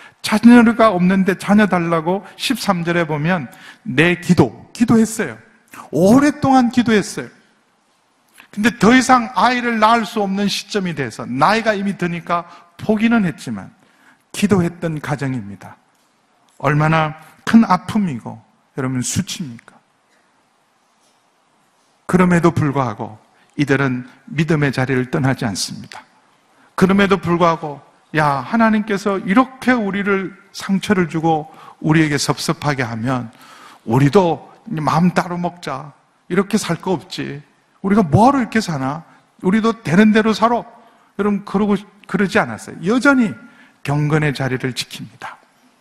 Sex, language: male, Korean